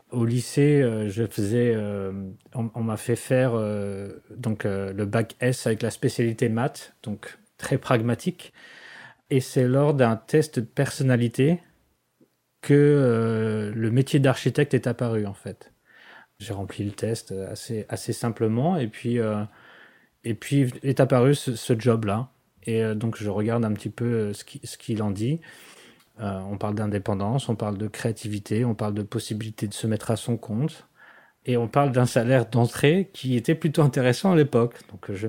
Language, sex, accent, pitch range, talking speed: French, male, French, 110-135 Hz, 175 wpm